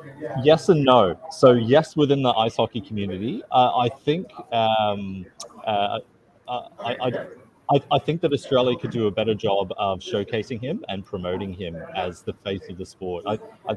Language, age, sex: English, 30-49, male